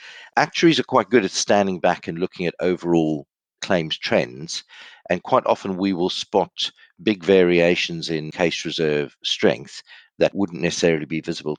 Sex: male